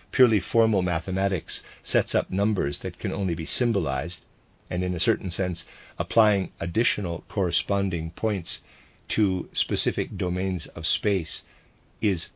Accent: American